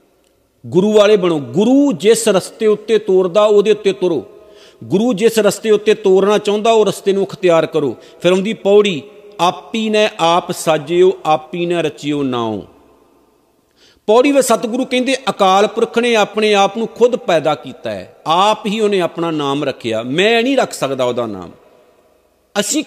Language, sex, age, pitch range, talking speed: Punjabi, male, 50-69, 155-215 Hz, 155 wpm